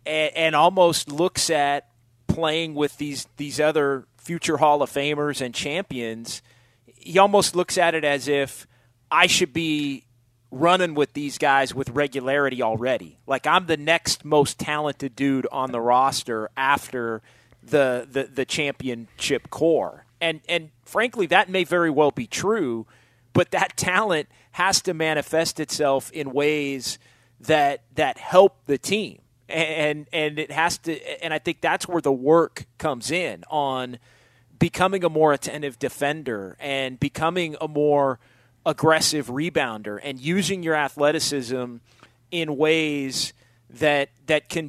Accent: American